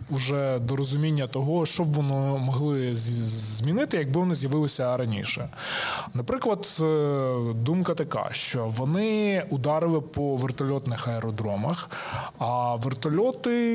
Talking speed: 105 wpm